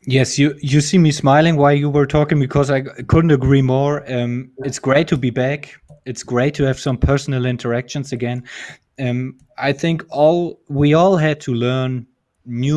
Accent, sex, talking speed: German, male, 185 wpm